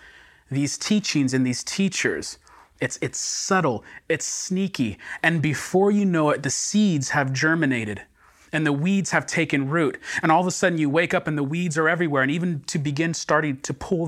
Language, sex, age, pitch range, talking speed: English, male, 30-49, 130-170 Hz, 190 wpm